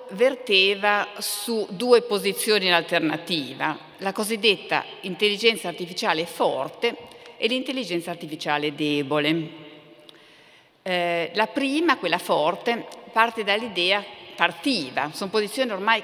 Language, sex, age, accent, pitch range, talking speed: Italian, female, 50-69, native, 165-225 Hz, 95 wpm